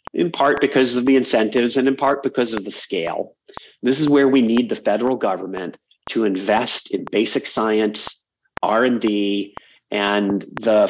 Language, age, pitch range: English, 40-59, 110-130 Hz